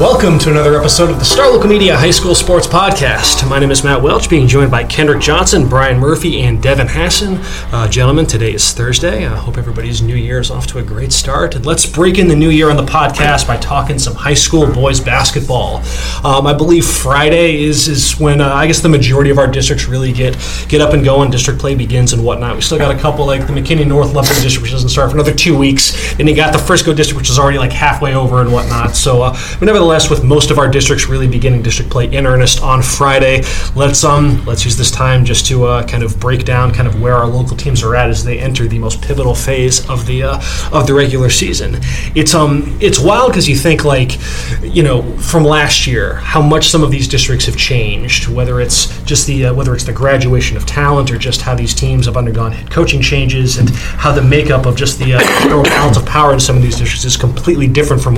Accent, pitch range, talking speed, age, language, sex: American, 125-150 Hz, 240 wpm, 20-39, English, male